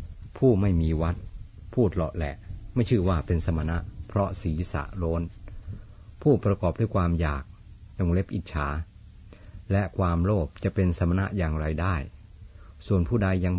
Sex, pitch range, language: male, 80-100 Hz, Thai